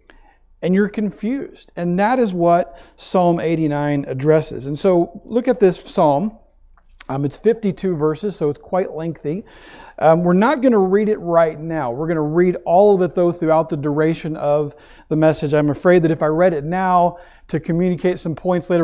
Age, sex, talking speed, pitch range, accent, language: 40-59, male, 190 wpm, 145-180 Hz, American, English